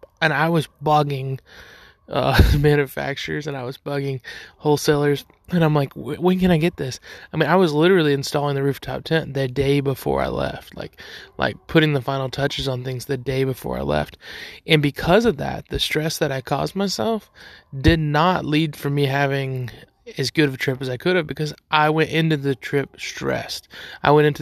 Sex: male